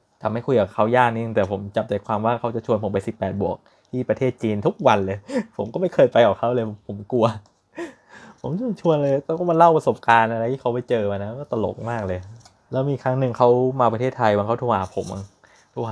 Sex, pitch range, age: male, 100-120 Hz, 20-39